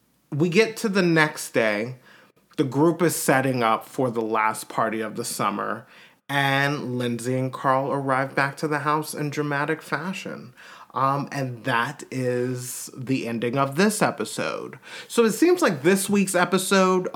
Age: 30-49